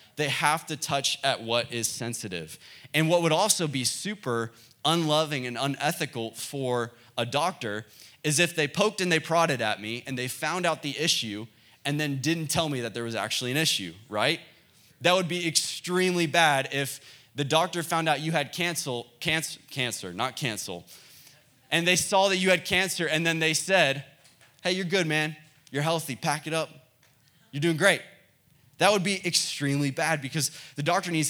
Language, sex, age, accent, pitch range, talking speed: English, male, 20-39, American, 125-160 Hz, 180 wpm